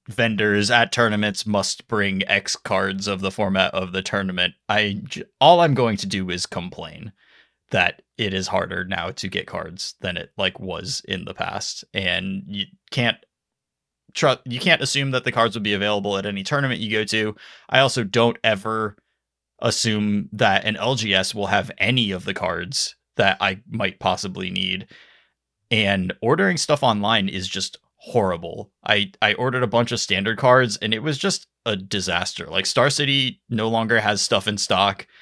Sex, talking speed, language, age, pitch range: male, 175 wpm, English, 20-39, 95-115 Hz